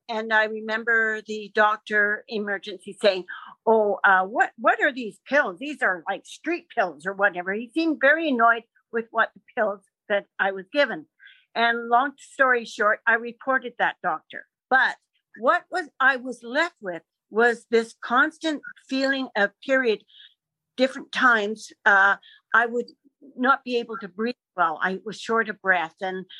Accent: American